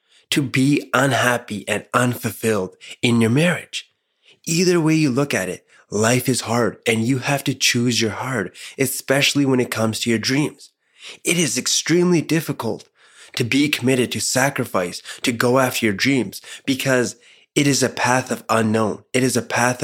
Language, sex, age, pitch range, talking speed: English, male, 20-39, 110-140 Hz, 170 wpm